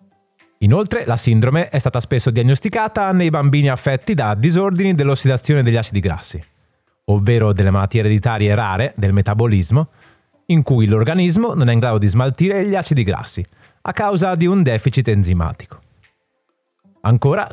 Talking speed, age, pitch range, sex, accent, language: 145 wpm, 30-49, 105-165 Hz, male, native, Italian